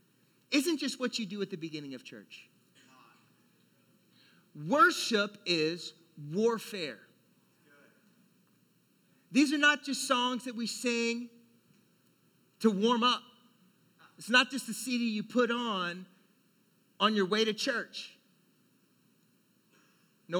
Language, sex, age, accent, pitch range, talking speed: English, male, 40-59, American, 200-255 Hz, 110 wpm